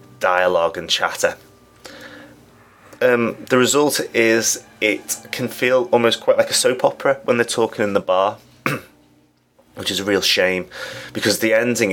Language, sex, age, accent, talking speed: English, male, 30-49, British, 150 wpm